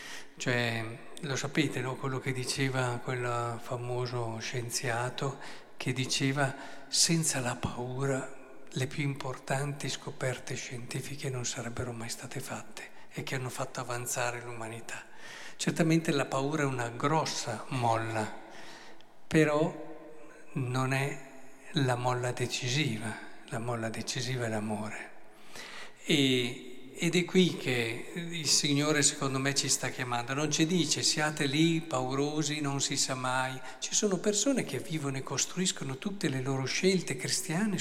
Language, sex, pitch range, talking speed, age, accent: Italian, male, 125-160 Hz, 130 wpm, 50-69, native